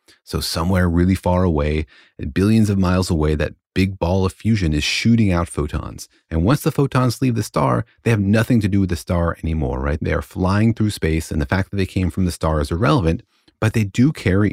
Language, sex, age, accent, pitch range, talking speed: English, male, 30-49, American, 80-110 Hz, 230 wpm